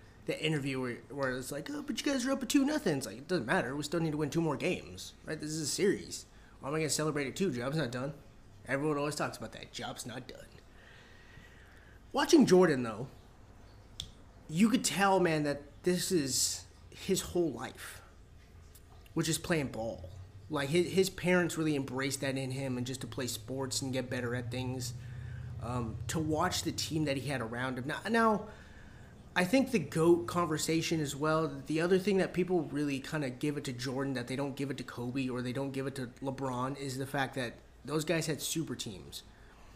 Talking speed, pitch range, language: 210 wpm, 120-155 Hz, English